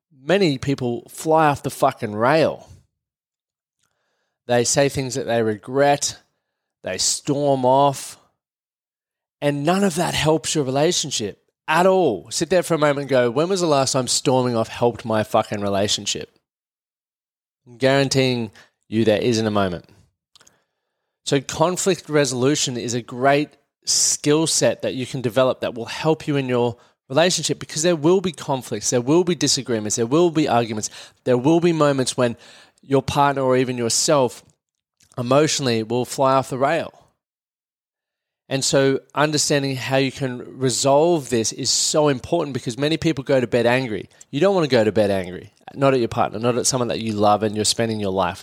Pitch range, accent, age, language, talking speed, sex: 120-145 Hz, Australian, 20-39, English, 170 wpm, male